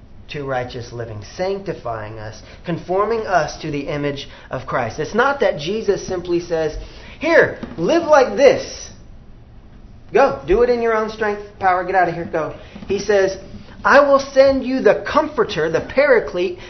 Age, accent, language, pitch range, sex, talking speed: 40-59, American, English, 155-230 Hz, male, 160 wpm